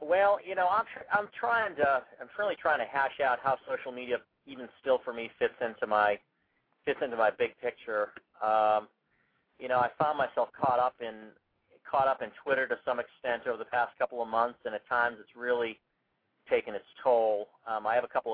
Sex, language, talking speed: male, English, 205 wpm